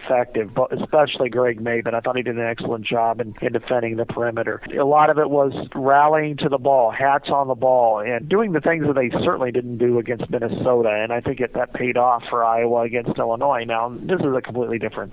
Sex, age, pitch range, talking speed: male, 40-59, 115-140 Hz, 230 wpm